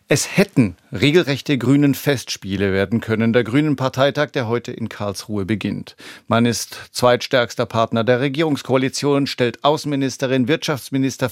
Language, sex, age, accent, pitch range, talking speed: German, male, 50-69, German, 115-140 Hz, 125 wpm